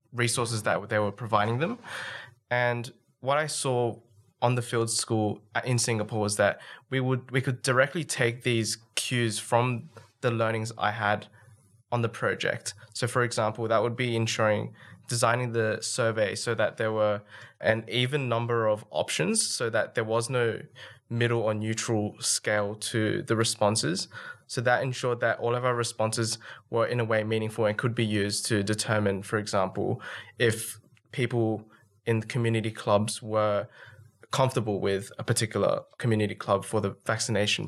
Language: English